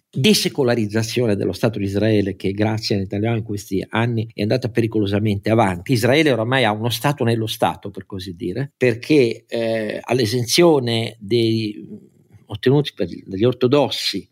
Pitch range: 105-135 Hz